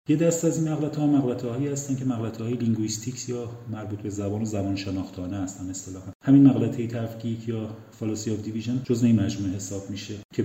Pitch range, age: 105-125 Hz, 40-59